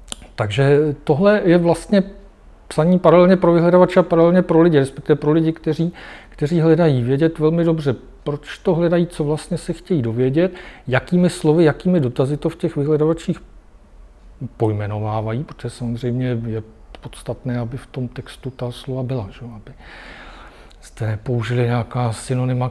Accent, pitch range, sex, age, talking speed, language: native, 110-150 Hz, male, 40-59, 145 wpm, Czech